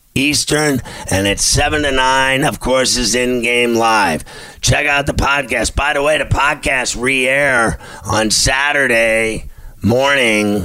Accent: American